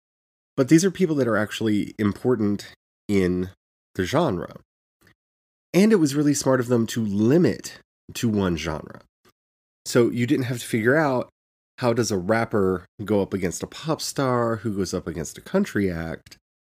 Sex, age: male, 30-49